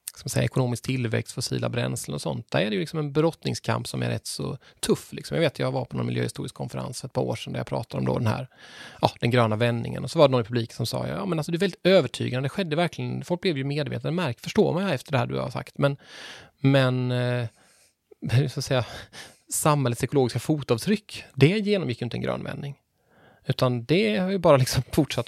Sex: male